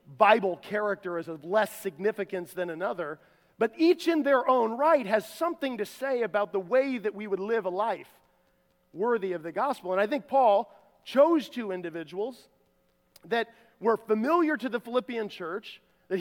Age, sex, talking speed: 40-59, male, 170 wpm